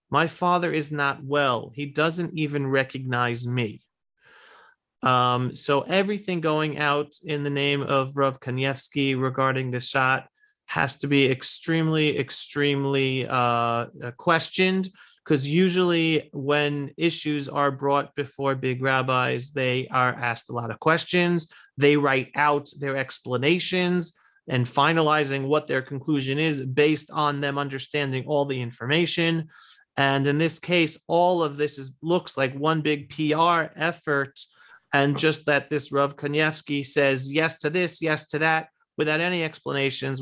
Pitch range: 135-160 Hz